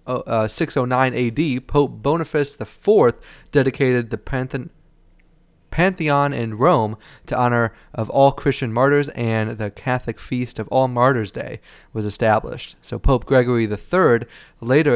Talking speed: 130 wpm